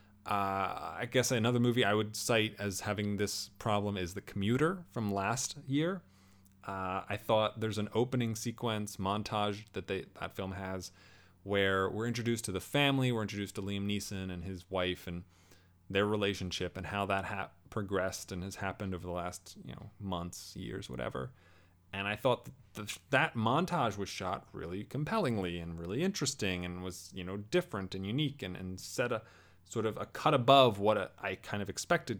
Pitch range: 90-115 Hz